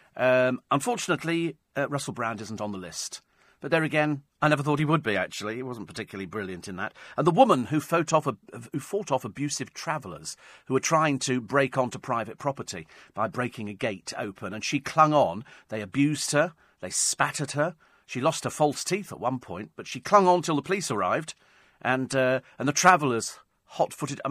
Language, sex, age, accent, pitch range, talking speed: English, male, 40-59, British, 115-160 Hz, 205 wpm